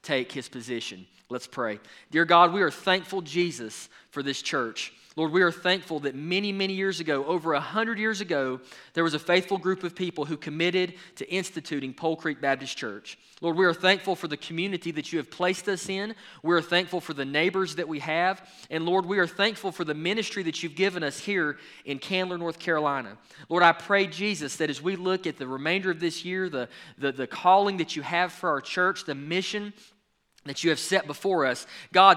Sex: male